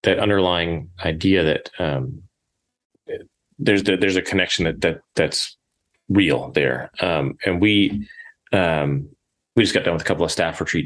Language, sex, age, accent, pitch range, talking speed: English, male, 30-49, American, 75-90 Hz, 160 wpm